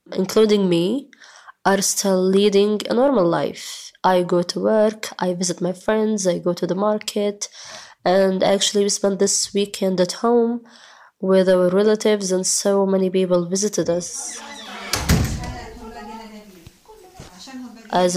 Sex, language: female, English